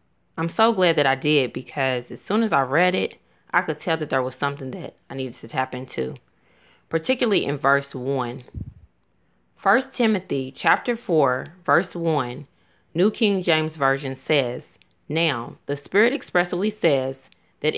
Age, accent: 20-39, American